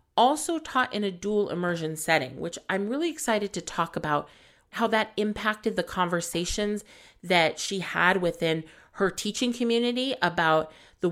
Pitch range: 160-235 Hz